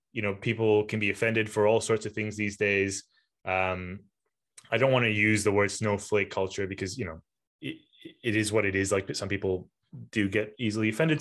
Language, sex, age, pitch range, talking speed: English, male, 20-39, 100-115 Hz, 210 wpm